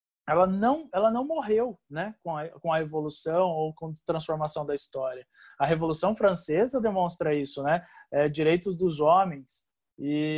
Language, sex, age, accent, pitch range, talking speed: Portuguese, male, 20-39, Brazilian, 155-195 Hz, 160 wpm